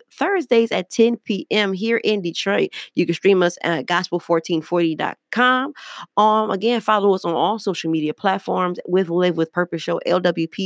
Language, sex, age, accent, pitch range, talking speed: English, female, 20-39, American, 165-230 Hz, 160 wpm